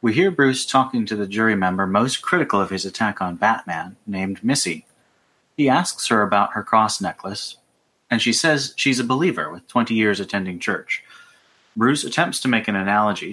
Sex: male